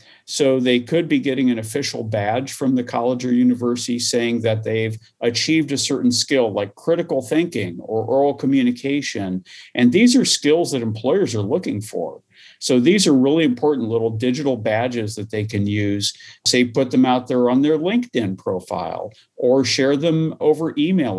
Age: 50-69